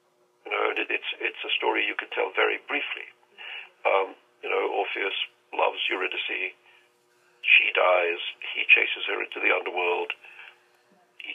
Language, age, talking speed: English, 50-69, 135 wpm